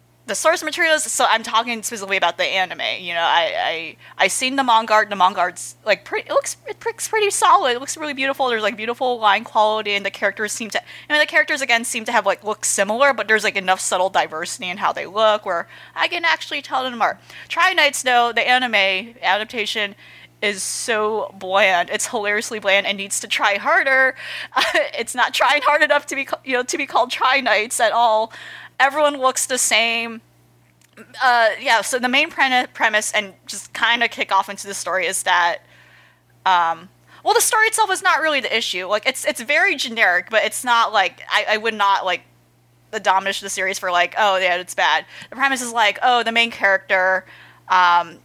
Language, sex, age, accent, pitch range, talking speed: English, female, 30-49, American, 195-270 Hz, 210 wpm